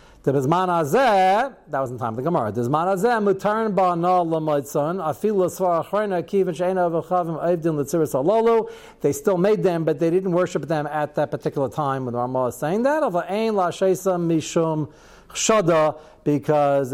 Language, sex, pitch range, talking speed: English, male, 140-180 Hz, 90 wpm